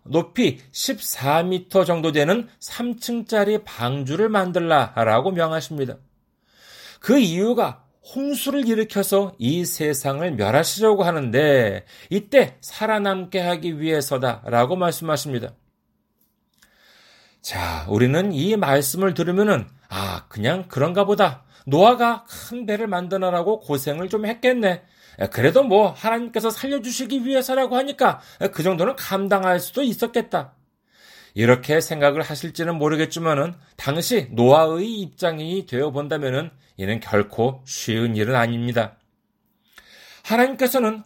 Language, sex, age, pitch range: Korean, male, 40-59, 140-230 Hz